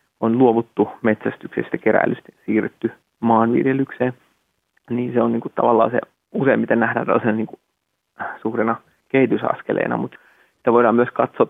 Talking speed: 115 wpm